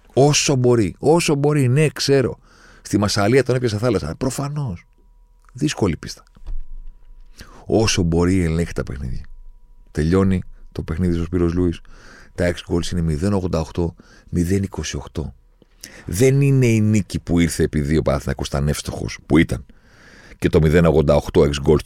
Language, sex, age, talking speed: Greek, male, 40-59, 135 wpm